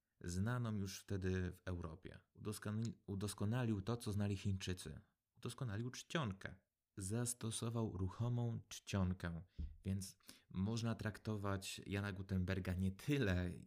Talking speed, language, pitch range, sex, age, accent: 95 wpm, Polish, 90-110 Hz, male, 30-49, native